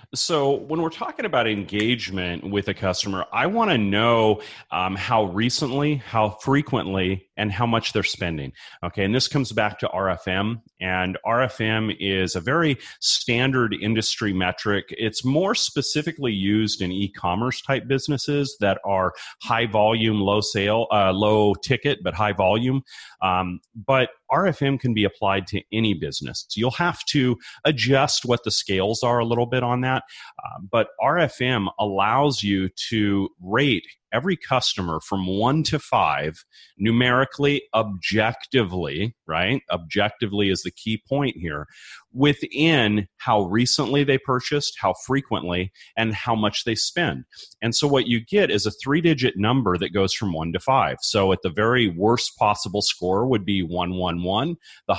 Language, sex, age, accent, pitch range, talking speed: English, male, 30-49, American, 100-130 Hz, 155 wpm